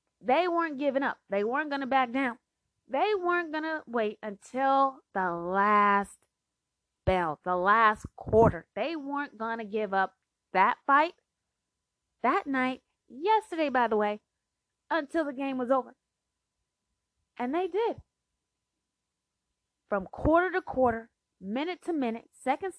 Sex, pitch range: female, 195-285 Hz